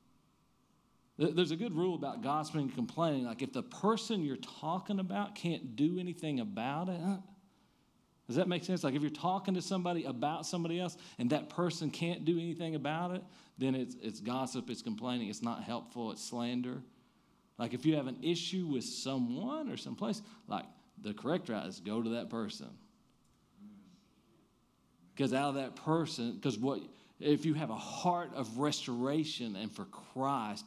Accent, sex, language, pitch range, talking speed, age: American, male, English, 135-205 Hz, 170 wpm, 40-59